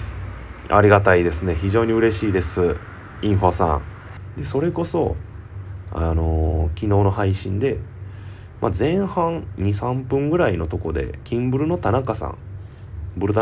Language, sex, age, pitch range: Japanese, male, 20-39, 90-115 Hz